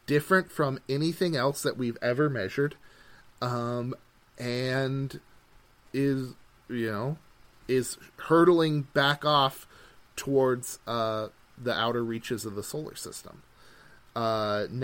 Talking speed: 110 wpm